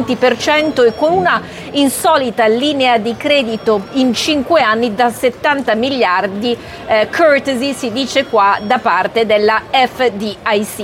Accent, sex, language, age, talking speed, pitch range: native, female, Italian, 40-59, 120 wpm, 205-250 Hz